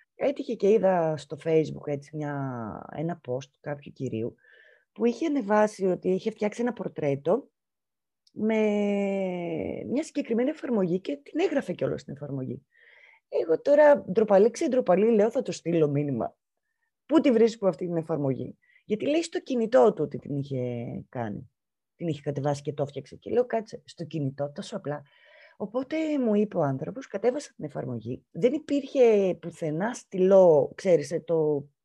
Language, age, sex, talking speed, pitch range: Greek, 20-39, female, 155 wpm, 145-235 Hz